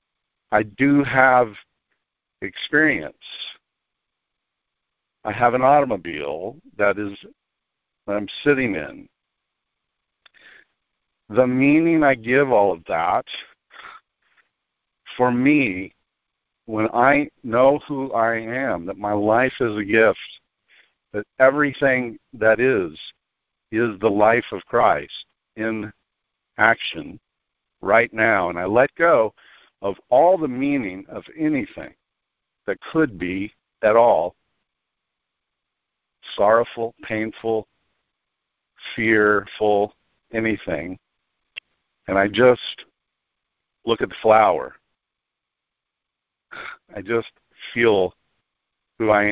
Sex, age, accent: male, 60-79, American